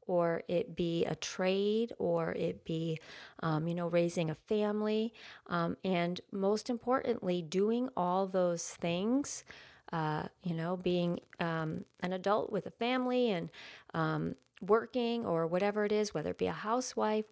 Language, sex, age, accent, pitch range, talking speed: English, female, 40-59, American, 165-210 Hz, 150 wpm